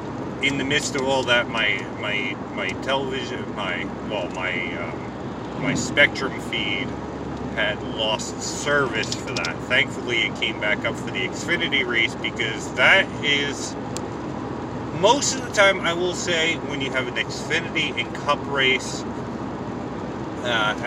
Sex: male